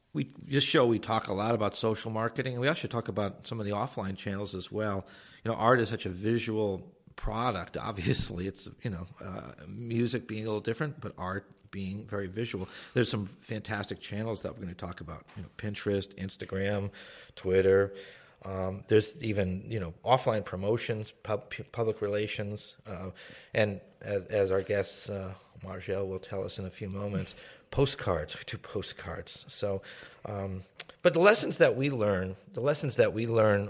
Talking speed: 175 wpm